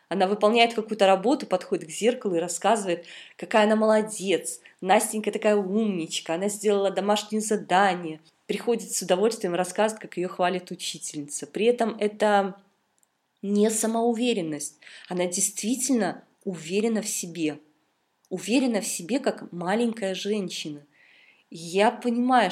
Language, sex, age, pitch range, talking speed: Russian, female, 20-39, 165-210 Hz, 125 wpm